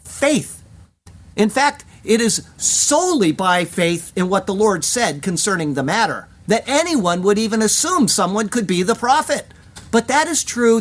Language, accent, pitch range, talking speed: English, American, 160-230 Hz, 165 wpm